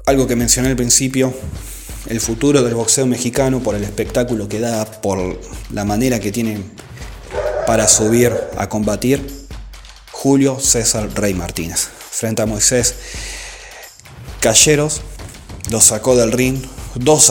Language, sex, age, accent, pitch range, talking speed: Spanish, male, 30-49, Argentinian, 100-125 Hz, 130 wpm